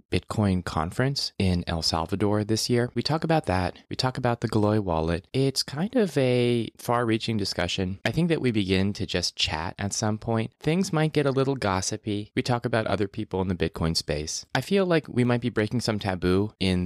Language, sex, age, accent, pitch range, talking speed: English, male, 20-39, American, 85-110 Hz, 210 wpm